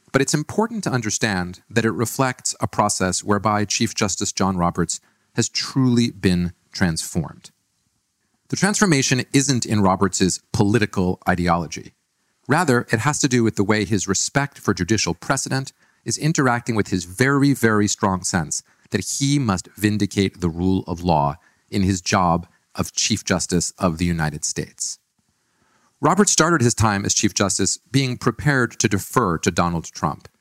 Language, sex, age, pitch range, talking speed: English, male, 40-59, 95-130 Hz, 155 wpm